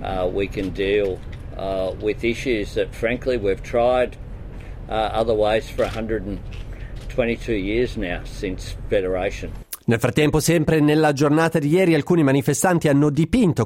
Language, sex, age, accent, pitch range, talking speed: Italian, male, 40-59, native, 120-160 Hz, 135 wpm